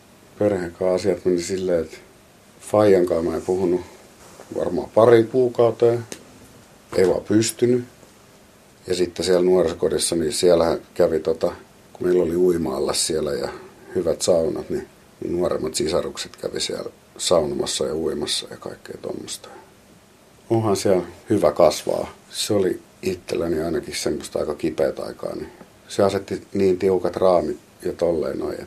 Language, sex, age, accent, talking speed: Finnish, male, 50-69, native, 130 wpm